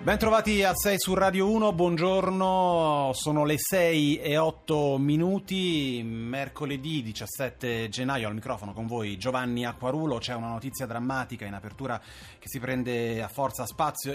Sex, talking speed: male, 150 wpm